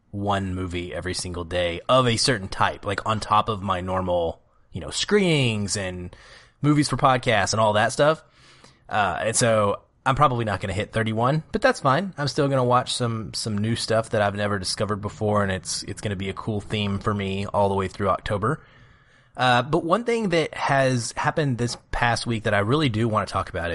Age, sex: 20-39, male